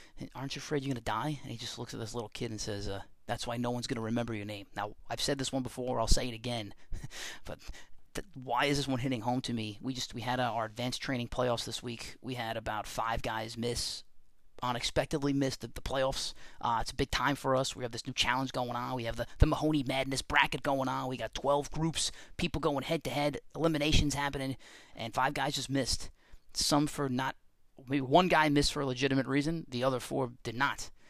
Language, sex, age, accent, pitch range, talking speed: English, male, 30-49, American, 115-140 Hz, 235 wpm